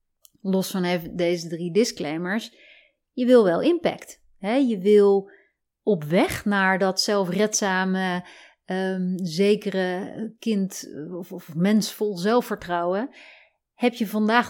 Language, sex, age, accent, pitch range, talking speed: Dutch, female, 30-49, Dutch, 185-230 Hz, 110 wpm